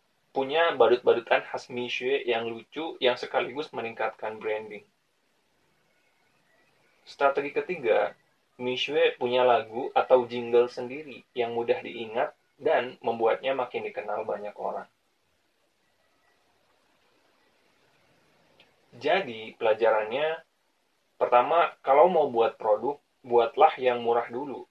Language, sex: Indonesian, male